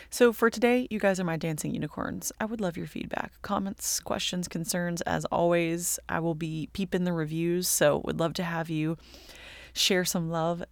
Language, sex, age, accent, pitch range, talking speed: English, female, 30-49, American, 155-180 Hz, 190 wpm